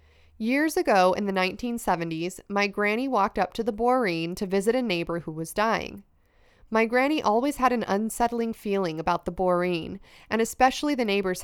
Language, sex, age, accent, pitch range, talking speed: English, female, 20-39, American, 185-240 Hz, 175 wpm